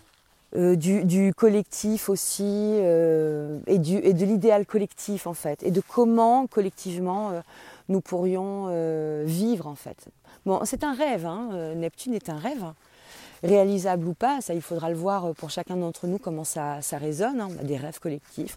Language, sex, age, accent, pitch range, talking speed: French, female, 30-49, French, 160-205 Hz, 185 wpm